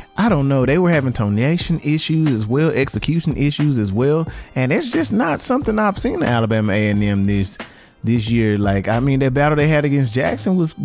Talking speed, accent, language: 210 wpm, American, English